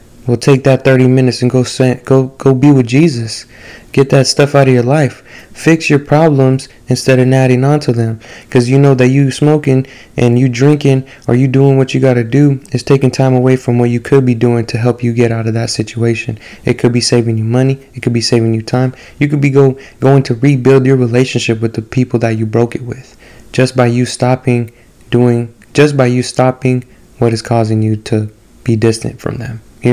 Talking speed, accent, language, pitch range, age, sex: 220 wpm, American, English, 115-130 Hz, 20-39, male